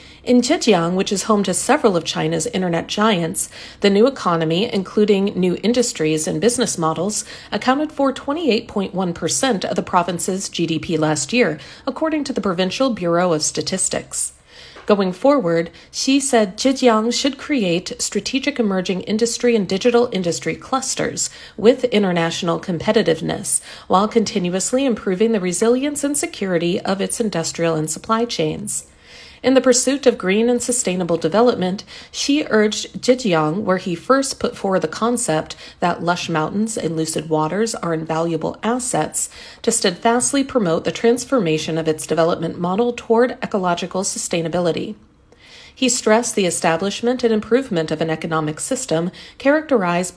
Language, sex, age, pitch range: Chinese, female, 40-59, 170-240 Hz